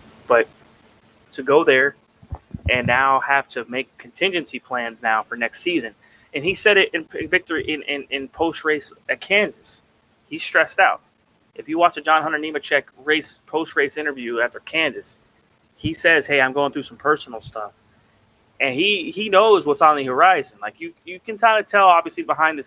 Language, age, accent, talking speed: English, 20-39, American, 185 wpm